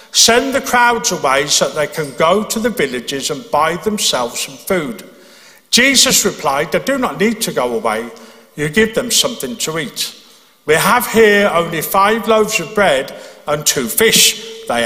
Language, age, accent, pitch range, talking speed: English, 50-69, British, 150-220 Hz, 180 wpm